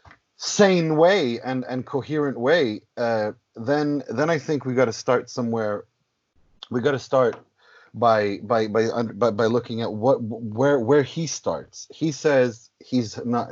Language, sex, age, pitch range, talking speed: English, male, 30-49, 105-130 Hz, 160 wpm